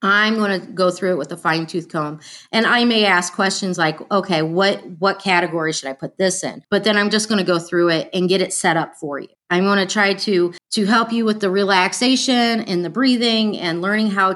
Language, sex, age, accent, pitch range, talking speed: English, female, 30-49, American, 170-205 Hz, 245 wpm